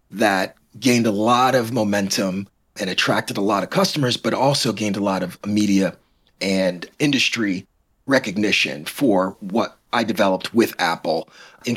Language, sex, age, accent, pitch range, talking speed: English, male, 30-49, American, 95-130 Hz, 150 wpm